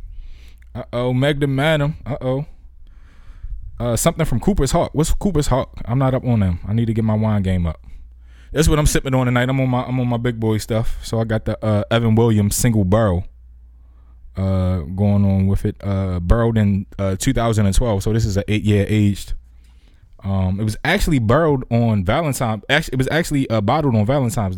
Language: English